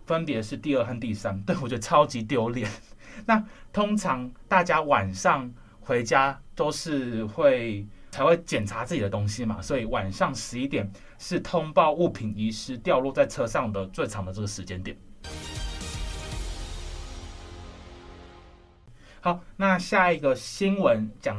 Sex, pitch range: male, 105-175 Hz